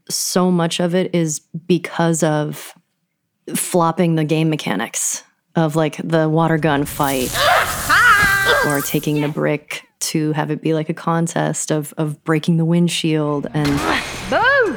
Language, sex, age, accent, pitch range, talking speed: English, female, 30-49, American, 145-170 Hz, 140 wpm